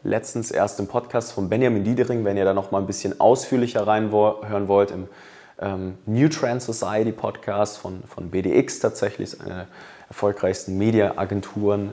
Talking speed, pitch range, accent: 160 wpm, 100-130 Hz, German